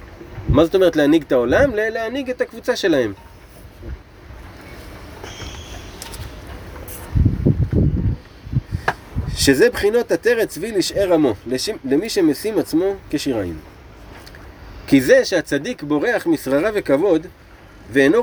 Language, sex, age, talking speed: Hebrew, male, 30-49, 85 wpm